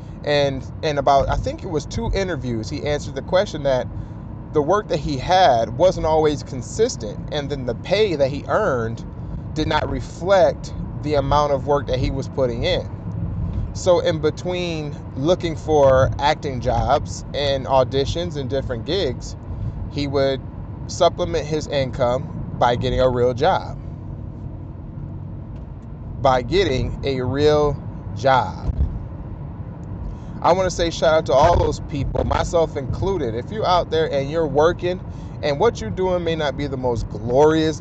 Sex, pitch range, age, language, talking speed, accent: male, 115-155 Hz, 20-39, English, 150 wpm, American